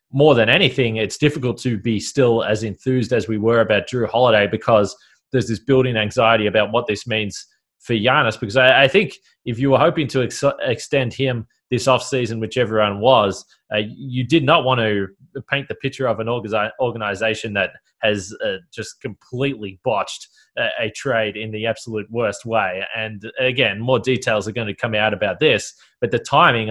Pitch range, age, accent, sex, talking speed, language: 110-130 Hz, 20-39, Australian, male, 195 wpm, English